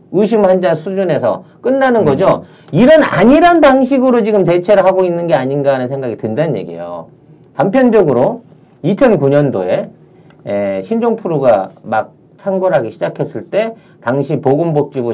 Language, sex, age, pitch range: Korean, male, 40-59, 145-225 Hz